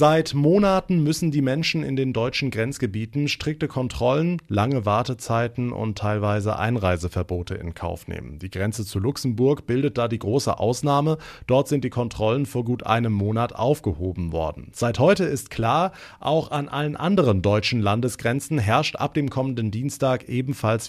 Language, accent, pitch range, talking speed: German, German, 105-145 Hz, 155 wpm